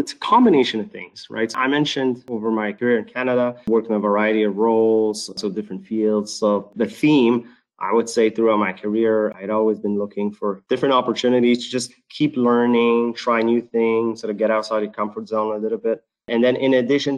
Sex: male